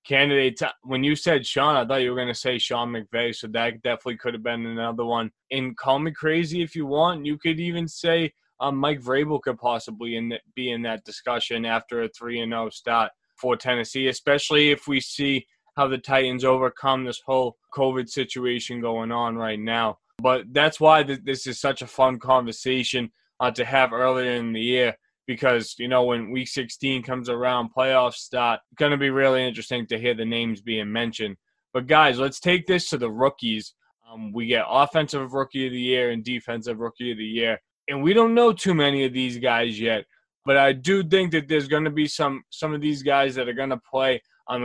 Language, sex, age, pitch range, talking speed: English, male, 20-39, 120-145 Hz, 210 wpm